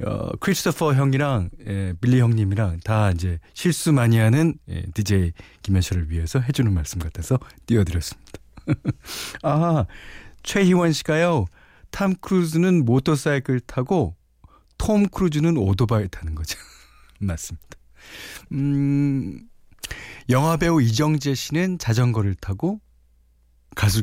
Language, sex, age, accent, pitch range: Korean, male, 40-59, native, 95-150 Hz